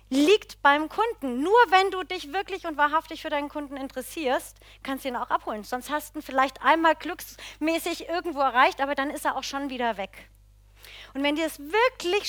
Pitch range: 190-295 Hz